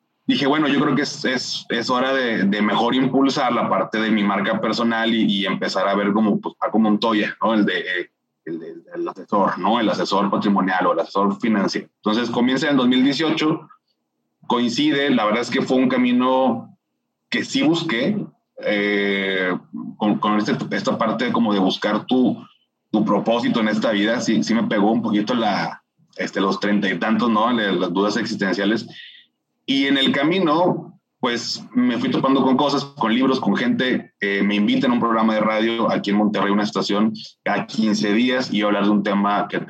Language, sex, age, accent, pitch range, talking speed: Spanish, male, 30-49, Mexican, 100-135 Hz, 185 wpm